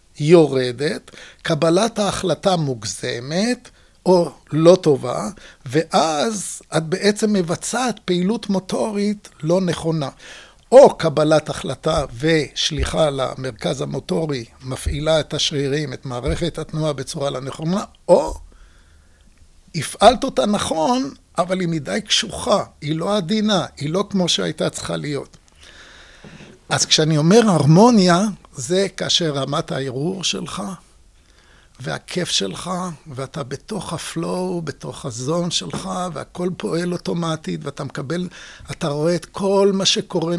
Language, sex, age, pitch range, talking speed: Hebrew, male, 60-79, 150-190 Hz, 110 wpm